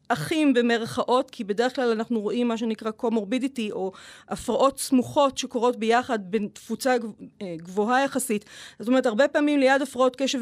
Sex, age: female, 30-49